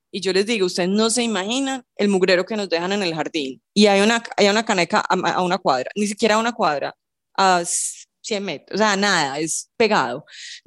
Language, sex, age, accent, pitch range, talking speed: Spanish, female, 20-39, Colombian, 180-215 Hz, 225 wpm